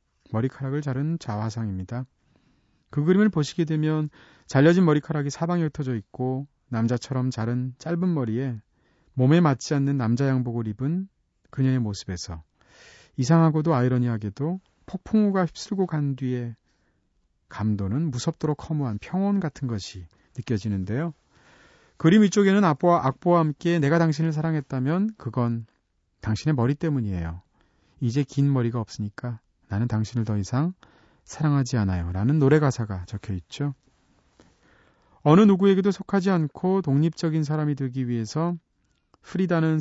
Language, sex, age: Korean, male, 40-59